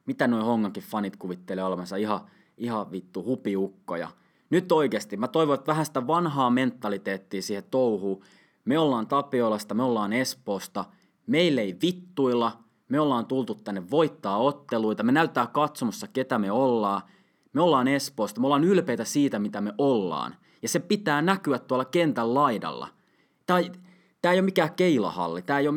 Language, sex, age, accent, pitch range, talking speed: Finnish, male, 20-39, native, 115-160 Hz, 155 wpm